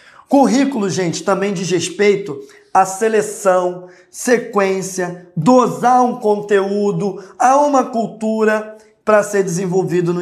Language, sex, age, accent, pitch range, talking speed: Portuguese, male, 20-39, Brazilian, 180-230 Hz, 105 wpm